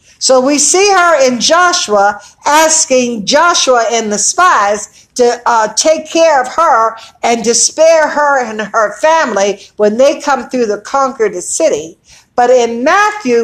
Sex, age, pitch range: female, 60-79, 215-280 Hz